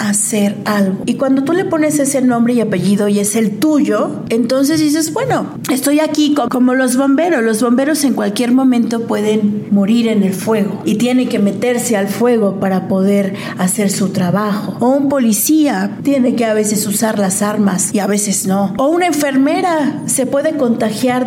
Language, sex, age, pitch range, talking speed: Spanish, female, 40-59, 200-270 Hz, 185 wpm